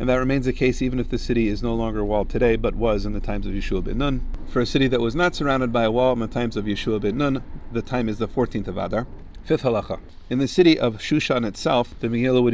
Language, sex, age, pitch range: English, male, 40-59, 105-125 Hz